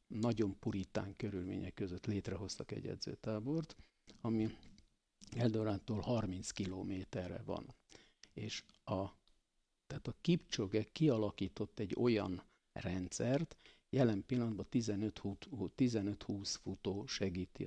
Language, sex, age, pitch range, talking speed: Hungarian, male, 50-69, 100-120 Hz, 90 wpm